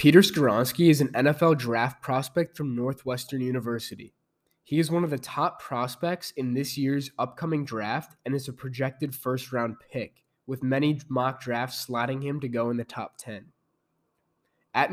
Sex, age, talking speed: male, 20-39, 165 wpm